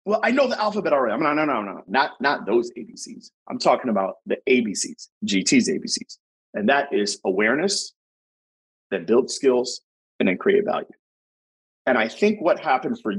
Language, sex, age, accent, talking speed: English, male, 30-49, American, 180 wpm